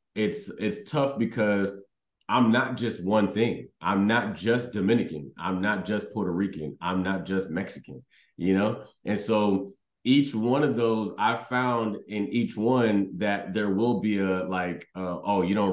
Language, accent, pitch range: English, American, 95-120 Hz